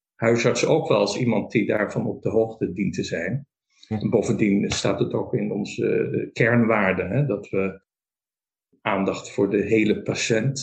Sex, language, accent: male, Dutch, Dutch